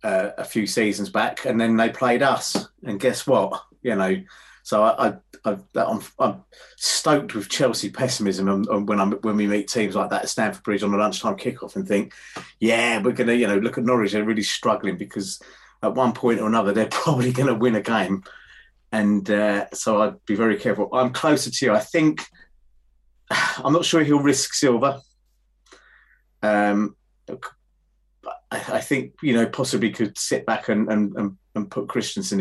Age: 30-49